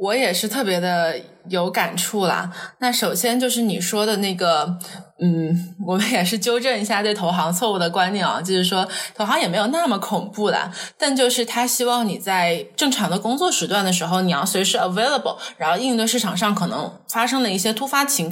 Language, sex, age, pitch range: Chinese, female, 20-39, 180-230 Hz